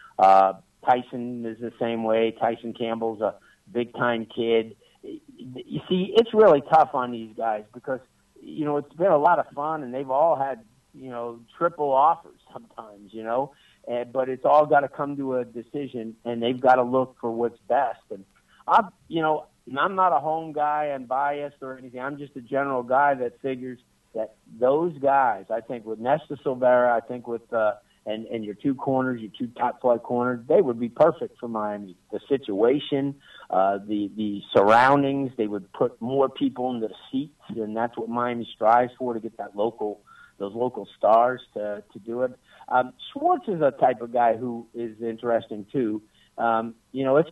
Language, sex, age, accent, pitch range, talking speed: English, male, 50-69, American, 115-140 Hz, 190 wpm